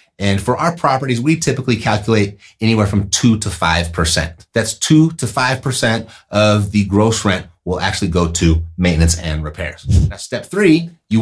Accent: American